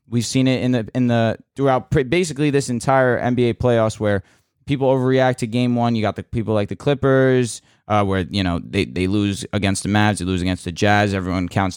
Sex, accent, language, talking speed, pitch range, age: male, American, English, 220 wpm, 105-135 Hz, 20-39